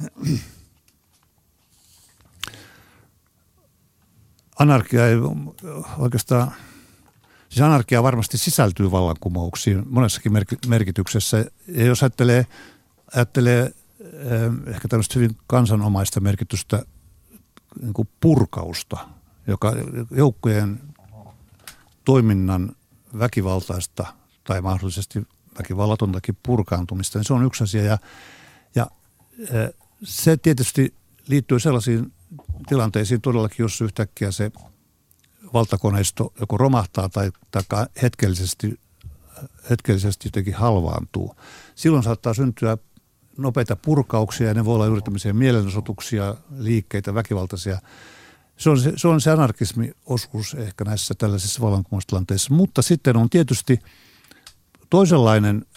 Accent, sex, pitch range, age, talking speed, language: native, male, 100-125 Hz, 50-69, 85 wpm, Finnish